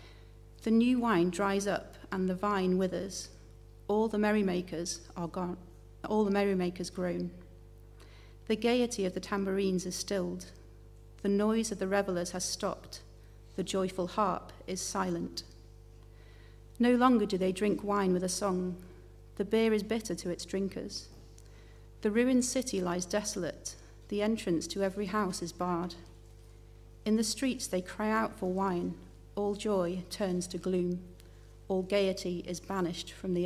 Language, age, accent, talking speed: English, 40-59, British, 150 wpm